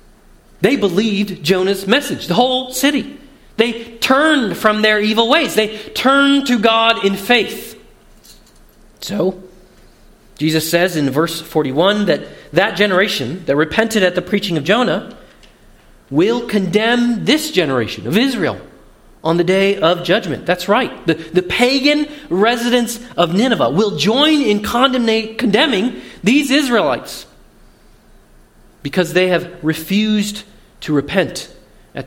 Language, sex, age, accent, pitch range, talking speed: English, male, 40-59, American, 175-245 Hz, 125 wpm